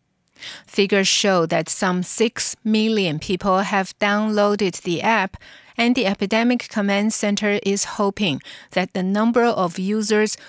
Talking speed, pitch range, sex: 130 wpm, 185-215 Hz, female